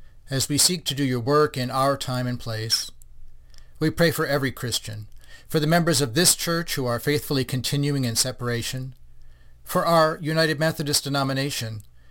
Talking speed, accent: 170 wpm, American